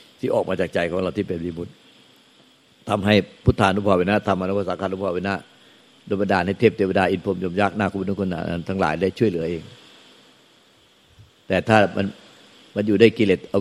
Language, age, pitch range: Thai, 60-79, 85-100 Hz